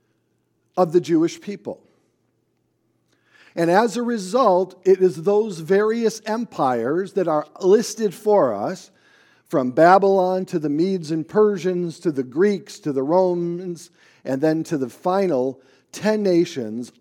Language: English